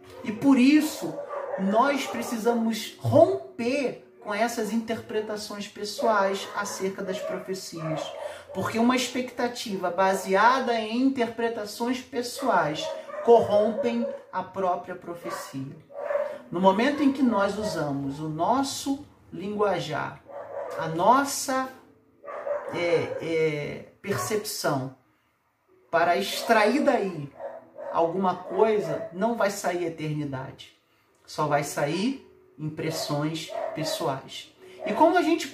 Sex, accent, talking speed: male, Brazilian, 95 wpm